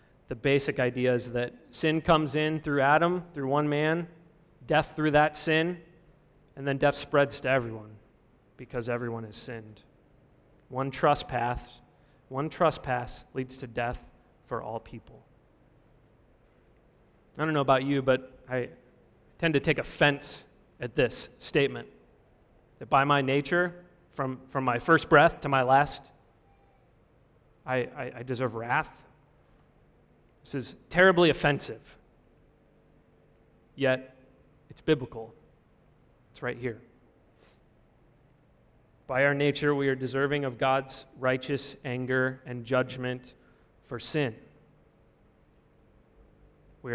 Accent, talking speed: American, 115 wpm